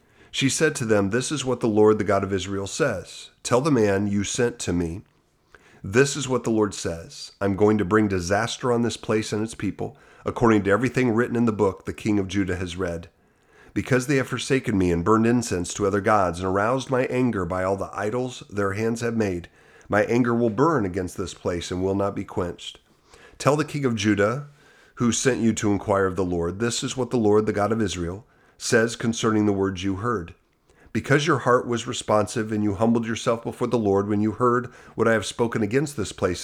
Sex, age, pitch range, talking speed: male, 40-59, 95-120 Hz, 225 wpm